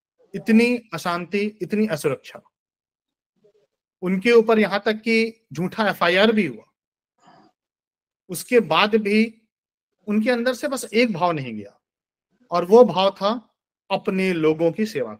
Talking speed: 125 wpm